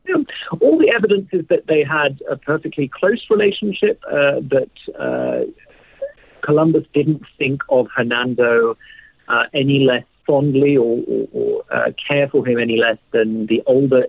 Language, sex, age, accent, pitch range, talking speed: English, male, 40-59, British, 120-160 Hz, 150 wpm